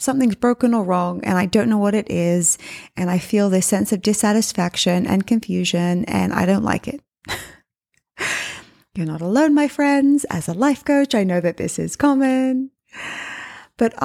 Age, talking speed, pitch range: 20-39, 175 wpm, 185-260 Hz